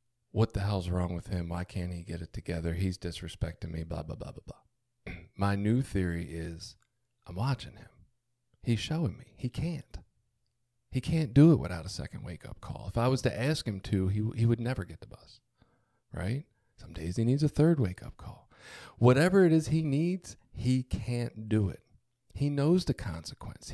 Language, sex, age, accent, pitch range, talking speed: English, male, 40-59, American, 100-130 Hz, 200 wpm